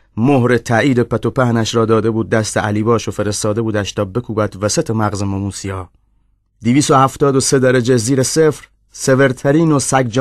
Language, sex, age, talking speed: Persian, male, 30-49, 160 wpm